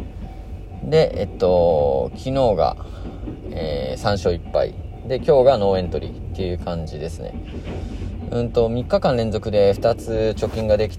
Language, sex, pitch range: Japanese, male, 85-115 Hz